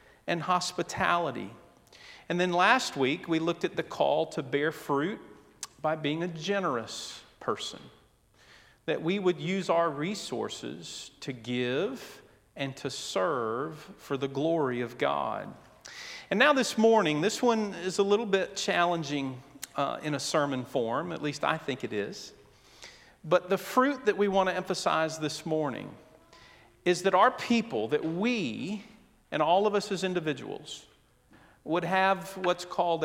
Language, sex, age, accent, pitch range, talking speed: English, male, 40-59, American, 140-190 Hz, 150 wpm